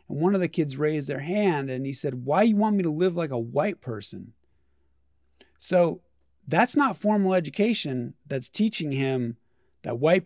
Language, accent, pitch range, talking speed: English, American, 130-180 Hz, 180 wpm